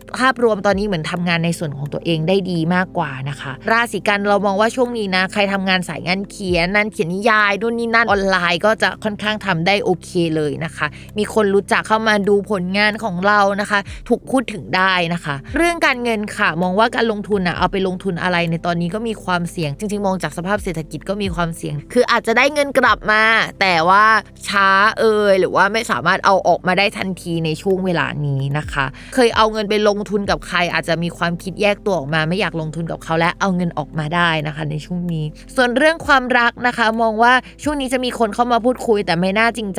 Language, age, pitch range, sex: Thai, 20-39, 170-215 Hz, female